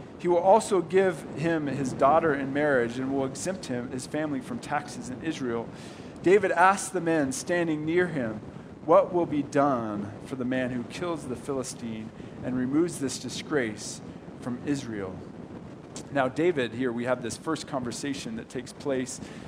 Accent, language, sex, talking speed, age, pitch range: American, English, male, 165 wpm, 40-59, 135-185 Hz